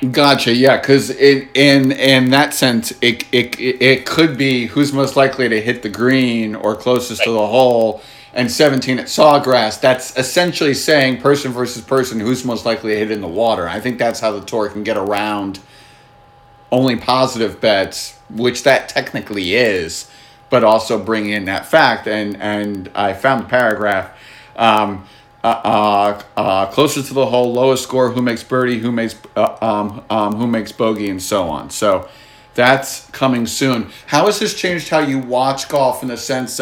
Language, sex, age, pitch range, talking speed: English, male, 40-59, 115-135 Hz, 180 wpm